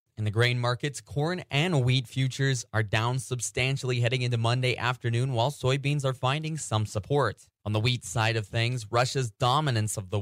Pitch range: 110-130 Hz